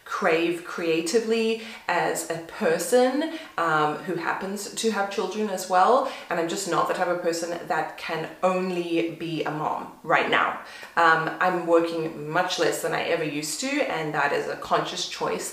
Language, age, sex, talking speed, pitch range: English, 20-39, female, 175 wpm, 160-205 Hz